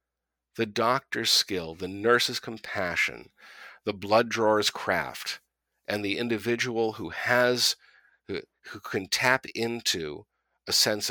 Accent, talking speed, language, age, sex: American, 120 wpm, English, 50-69, male